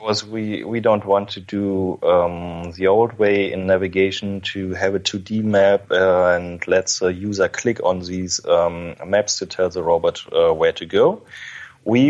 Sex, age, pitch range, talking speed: male, 30-49, 90-115 Hz, 190 wpm